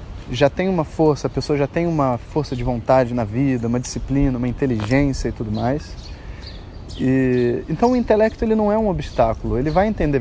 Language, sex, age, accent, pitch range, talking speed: Portuguese, male, 20-39, Brazilian, 100-165 Hz, 190 wpm